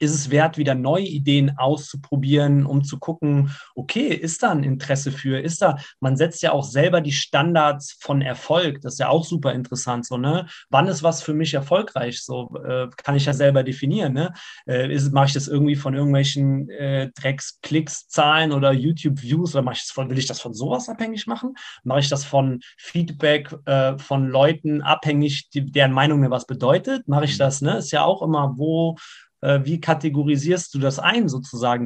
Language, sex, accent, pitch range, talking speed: German, male, German, 135-155 Hz, 200 wpm